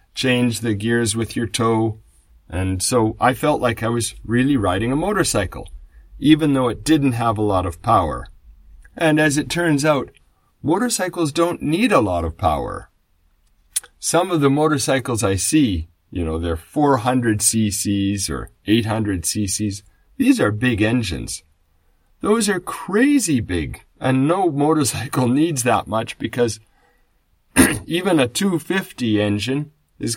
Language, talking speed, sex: English, 145 wpm, male